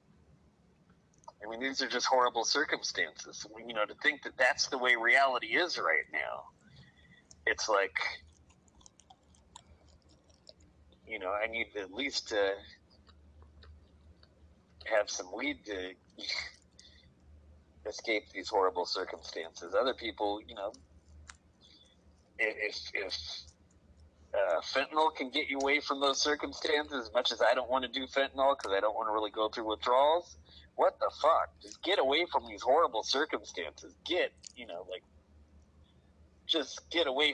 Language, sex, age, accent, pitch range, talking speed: English, male, 30-49, American, 75-110 Hz, 140 wpm